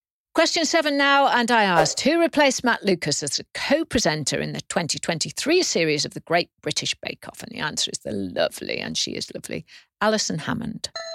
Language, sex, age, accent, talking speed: English, female, 50-69, British, 190 wpm